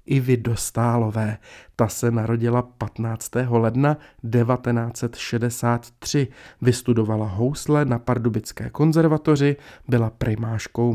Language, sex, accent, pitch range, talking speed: Czech, male, native, 115-135 Hz, 75 wpm